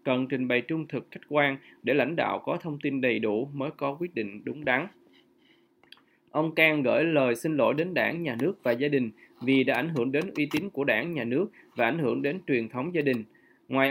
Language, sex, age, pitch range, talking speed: Vietnamese, male, 20-39, 125-155 Hz, 235 wpm